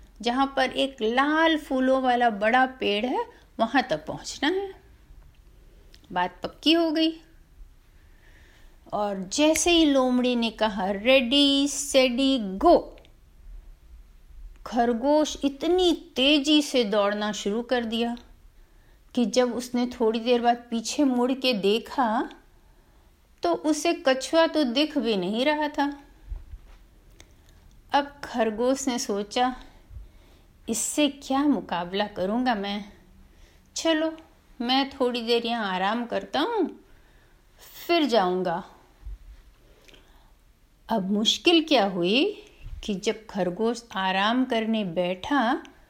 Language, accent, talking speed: Hindi, native, 105 wpm